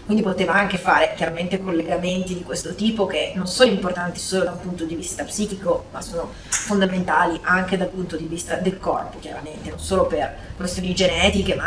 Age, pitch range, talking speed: 30-49, 175-205 Hz, 190 wpm